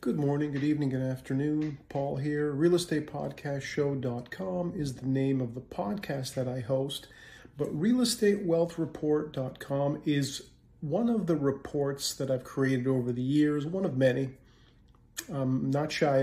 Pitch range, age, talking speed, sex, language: 135-165 Hz, 40-59, 135 wpm, male, English